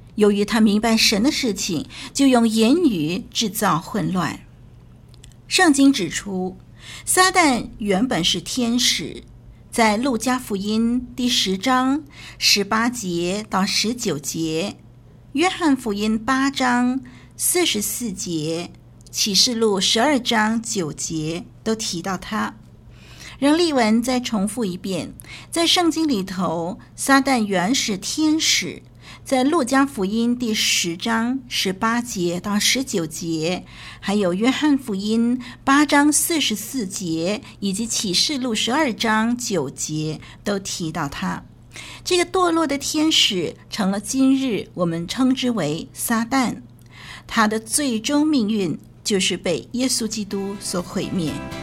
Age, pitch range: 50-69, 185-260 Hz